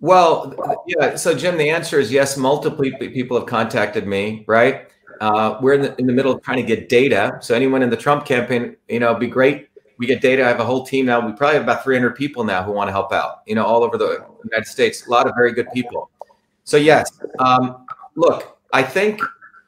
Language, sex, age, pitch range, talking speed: English, male, 30-49, 115-140 Hz, 235 wpm